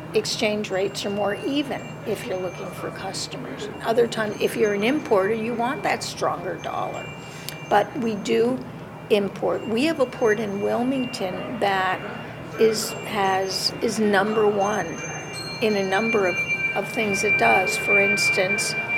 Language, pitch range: English, 190-225 Hz